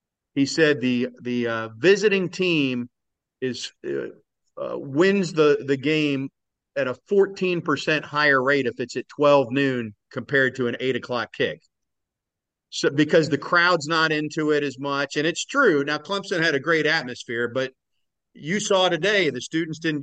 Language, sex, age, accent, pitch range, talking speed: English, male, 50-69, American, 125-155 Hz, 170 wpm